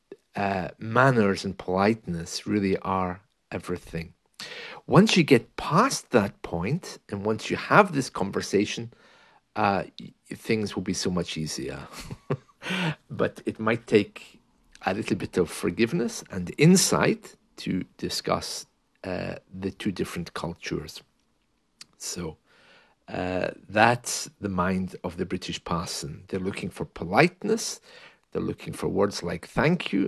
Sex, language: male, English